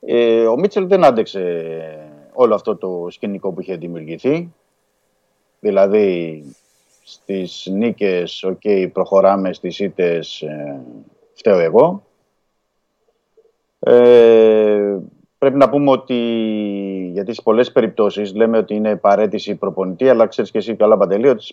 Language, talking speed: Greek, 120 wpm